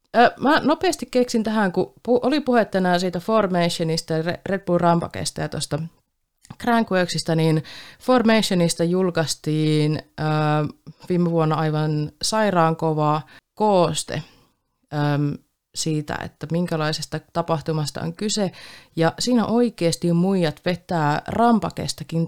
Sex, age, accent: female, 30-49, native